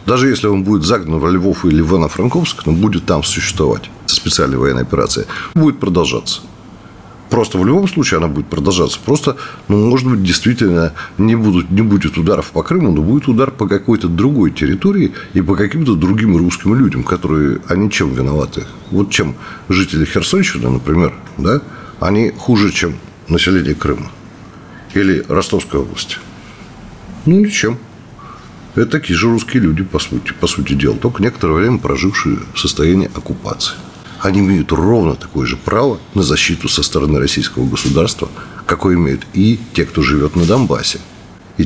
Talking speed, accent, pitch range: 155 wpm, native, 85-115 Hz